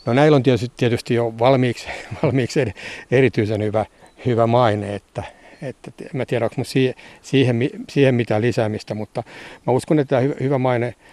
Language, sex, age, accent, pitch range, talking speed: Finnish, male, 60-79, native, 115-135 Hz, 140 wpm